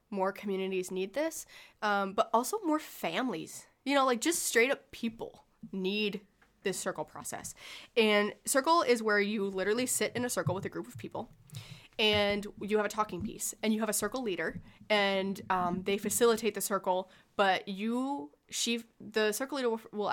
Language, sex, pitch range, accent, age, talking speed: English, female, 175-215 Hz, American, 20-39, 180 wpm